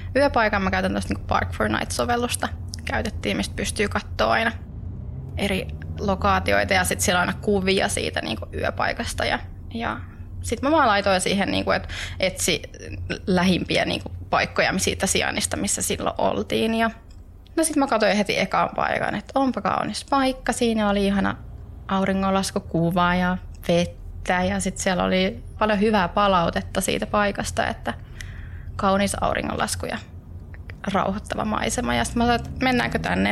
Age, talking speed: 20-39, 145 wpm